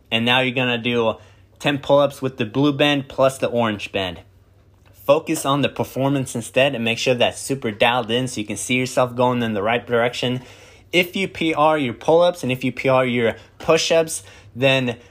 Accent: American